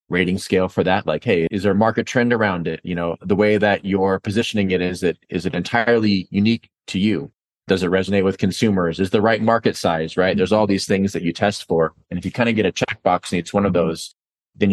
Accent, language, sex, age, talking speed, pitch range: American, English, male, 30-49, 255 wpm, 90-105 Hz